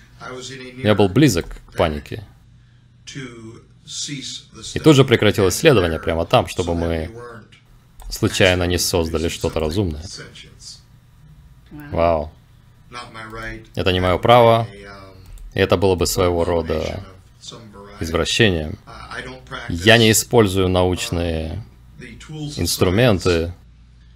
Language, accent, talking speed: Russian, native, 90 wpm